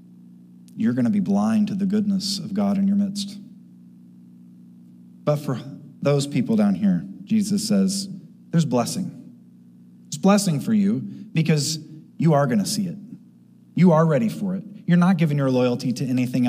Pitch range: 130-205 Hz